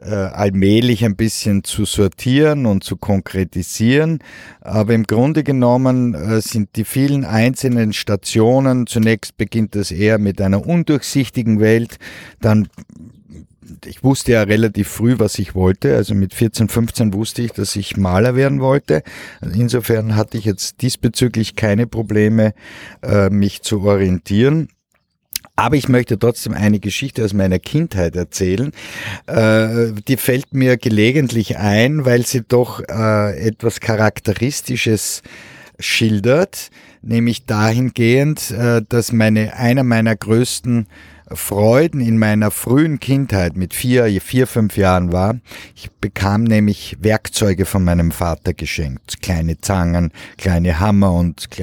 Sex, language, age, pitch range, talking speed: male, German, 50-69, 100-120 Hz, 125 wpm